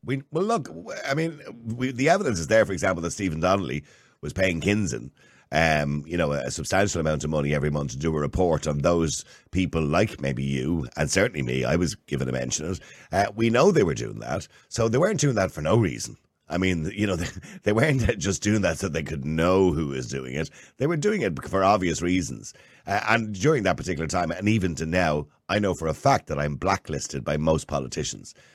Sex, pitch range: male, 75-100 Hz